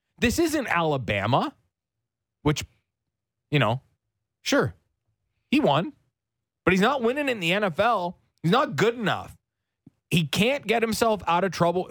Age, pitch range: 30-49, 120-180 Hz